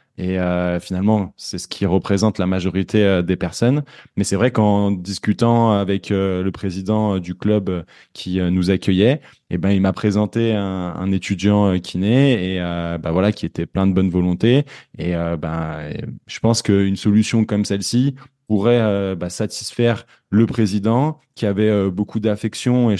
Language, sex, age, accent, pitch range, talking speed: French, male, 20-39, French, 95-110 Hz, 185 wpm